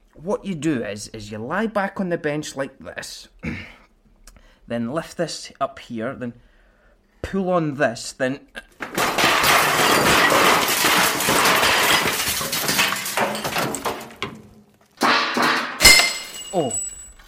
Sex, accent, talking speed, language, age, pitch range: male, British, 85 wpm, English, 20-39, 120-180 Hz